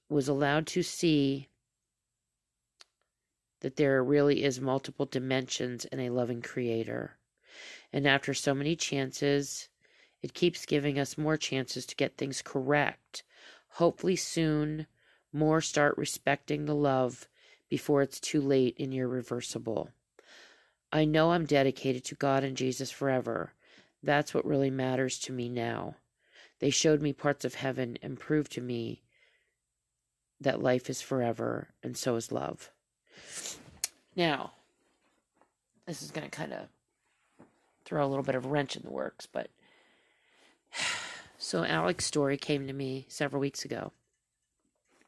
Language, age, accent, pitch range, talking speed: English, 40-59, American, 130-150 Hz, 135 wpm